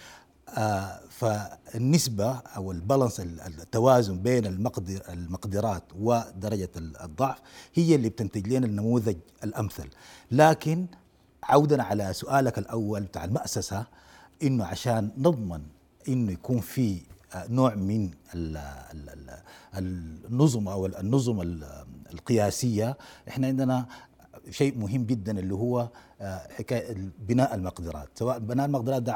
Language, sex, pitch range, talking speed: Arabic, male, 95-135 Hz, 100 wpm